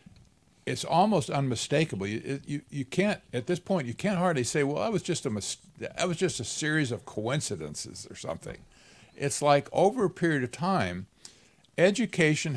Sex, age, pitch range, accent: male, 50-69, 110-160 Hz, American